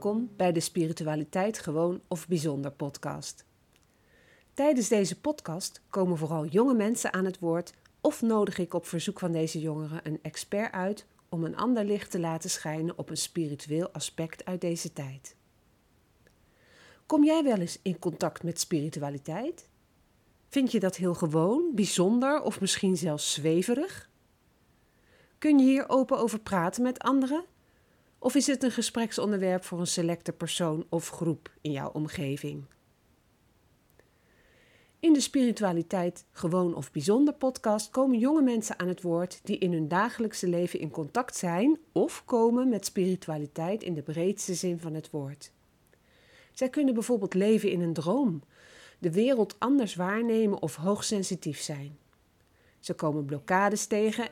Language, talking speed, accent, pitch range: Dutch, 145 wpm, Dutch, 160-220 Hz